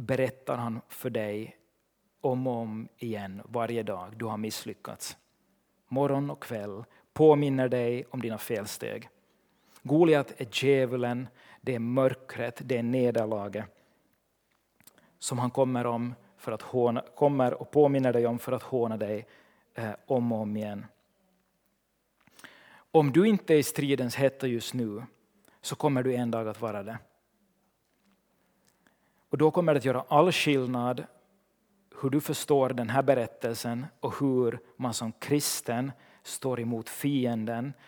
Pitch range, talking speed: 115-140 Hz, 145 wpm